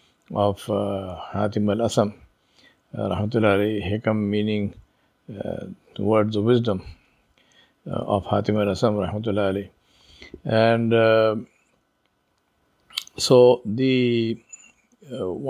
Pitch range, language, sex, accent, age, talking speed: 105-135 Hz, English, male, Indian, 50-69, 75 wpm